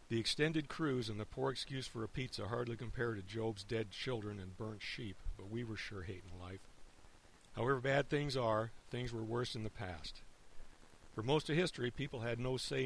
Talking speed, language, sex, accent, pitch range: 200 wpm, English, male, American, 100-130 Hz